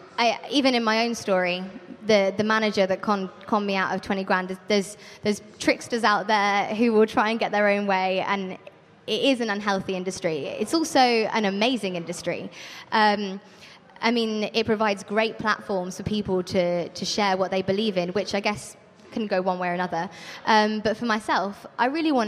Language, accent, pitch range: English, British, 190-230 Hz